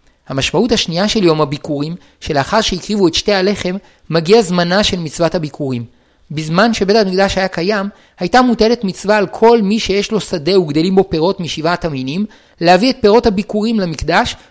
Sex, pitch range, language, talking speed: male, 165-215 Hz, Hebrew, 160 wpm